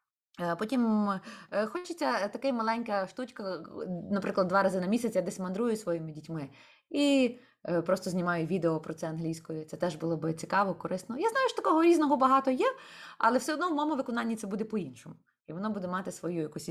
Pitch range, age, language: 175-265 Hz, 20-39, Ukrainian